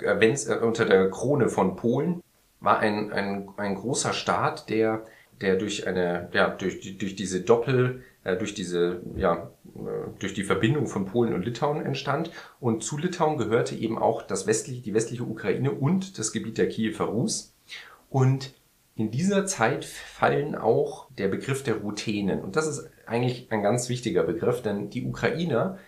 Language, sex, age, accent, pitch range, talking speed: German, male, 40-59, German, 105-135 Hz, 160 wpm